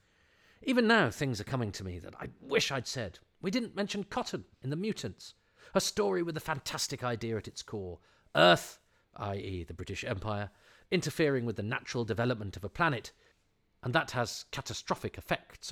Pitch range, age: 100-140 Hz, 40-59